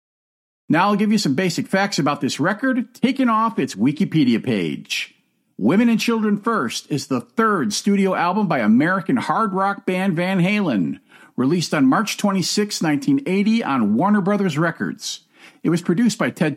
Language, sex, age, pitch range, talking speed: English, male, 50-69, 165-230 Hz, 165 wpm